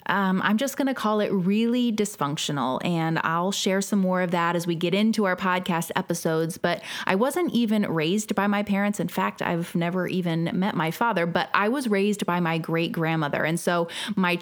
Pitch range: 165-200 Hz